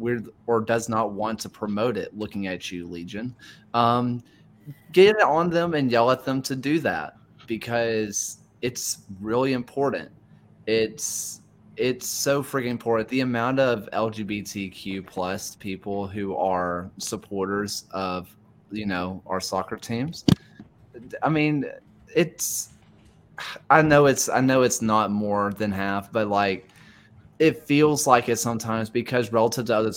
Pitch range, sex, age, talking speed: 105-130 Hz, male, 20-39, 140 wpm